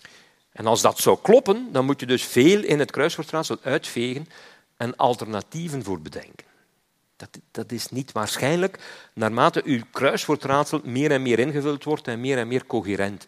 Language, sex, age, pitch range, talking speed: Dutch, male, 50-69, 110-145 Hz, 165 wpm